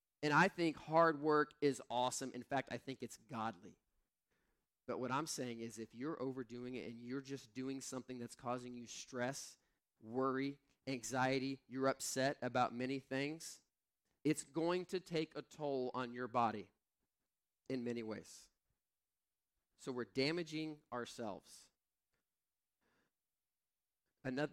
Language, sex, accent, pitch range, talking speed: English, male, American, 120-145 Hz, 135 wpm